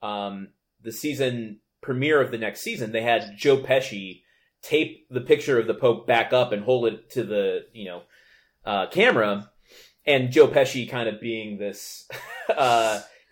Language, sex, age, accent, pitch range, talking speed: English, male, 30-49, American, 115-155 Hz, 165 wpm